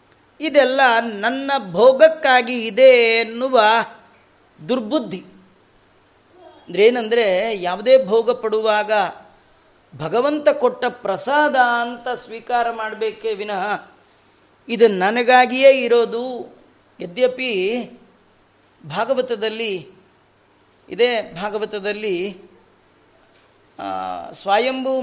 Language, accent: Kannada, native